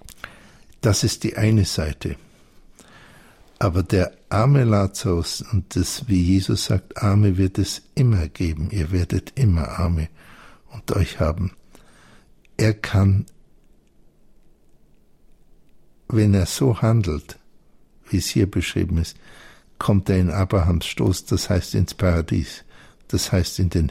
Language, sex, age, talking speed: German, male, 60-79, 120 wpm